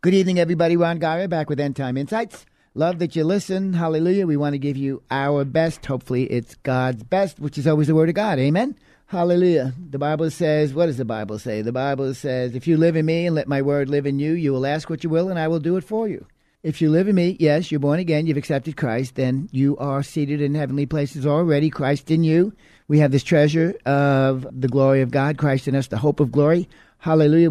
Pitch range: 135-160 Hz